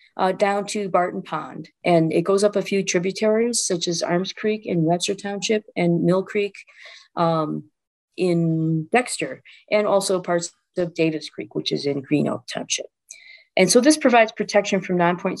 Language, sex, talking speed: English, female, 170 wpm